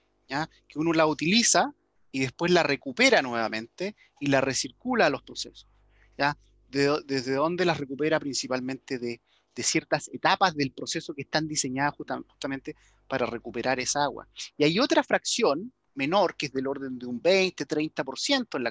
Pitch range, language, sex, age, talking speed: 125-155 Hz, Spanish, male, 30-49, 165 wpm